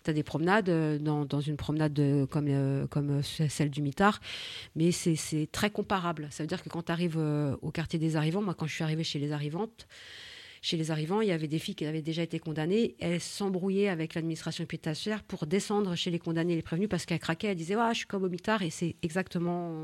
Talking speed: 240 wpm